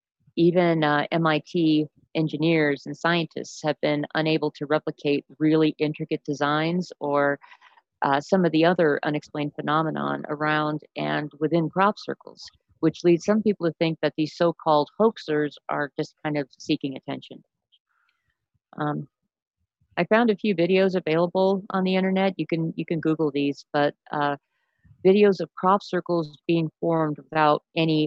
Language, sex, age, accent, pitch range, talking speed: English, female, 50-69, American, 145-170 Hz, 145 wpm